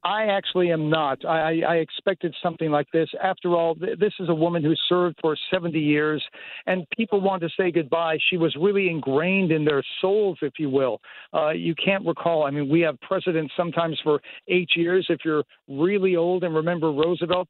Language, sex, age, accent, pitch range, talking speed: English, male, 60-79, American, 155-185 Hz, 200 wpm